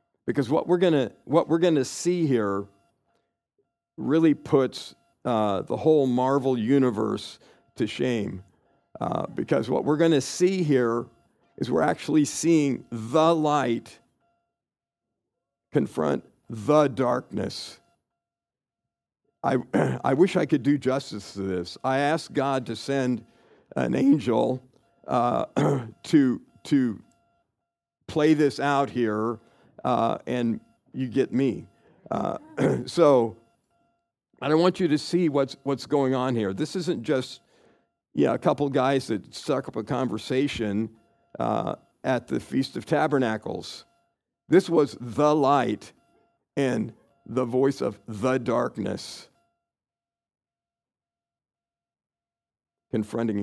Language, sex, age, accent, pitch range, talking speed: English, male, 50-69, American, 115-150 Hz, 115 wpm